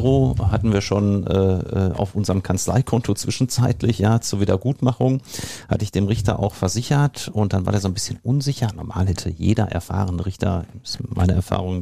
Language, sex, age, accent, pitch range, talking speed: German, male, 50-69, German, 95-125 Hz, 170 wpm